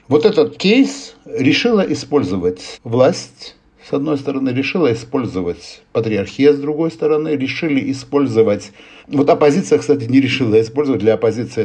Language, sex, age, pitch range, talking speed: Russian, male, 60-79, 115-155 Hz, 130 wpm